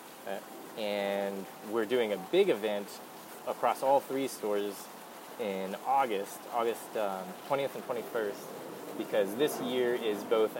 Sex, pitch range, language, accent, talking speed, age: male, 100-120 Hz, English, American, 130 wpm, 20-39